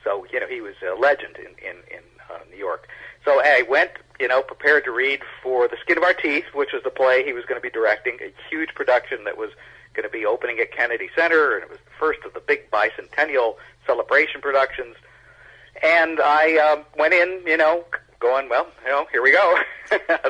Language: English